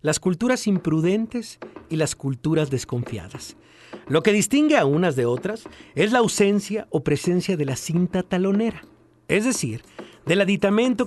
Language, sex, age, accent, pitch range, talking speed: Spanish, male, 50-69, Mexican, 140-215 Hz, 145 wpm